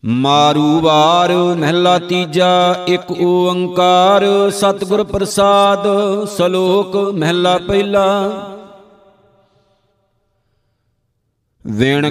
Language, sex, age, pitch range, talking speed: Punjabi, male, 50-69, 175-200 Hz, 55 wpm